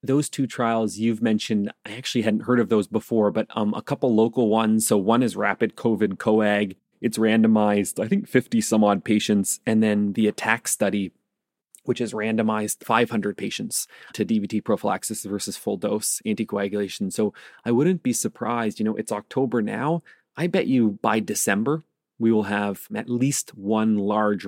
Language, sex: English, male